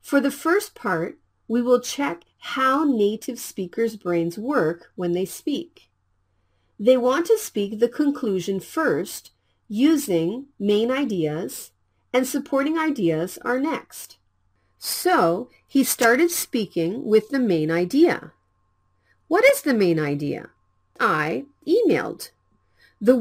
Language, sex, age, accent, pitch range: Korean, female, 40-59, American, 170-285 Hz